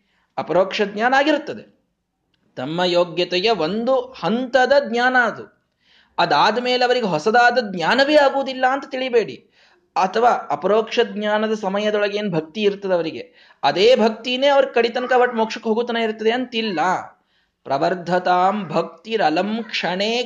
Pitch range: 210-260 Hz